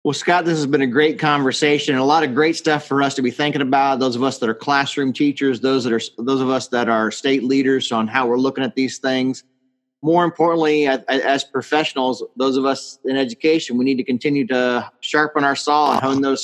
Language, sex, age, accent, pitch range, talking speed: English, male, 30-49, American, 125-145 Hz, 235 wpm